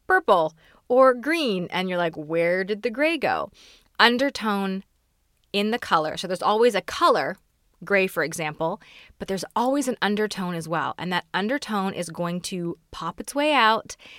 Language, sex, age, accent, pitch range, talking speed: English, female, 20-39, American, 170-215 Hz, 170 wpm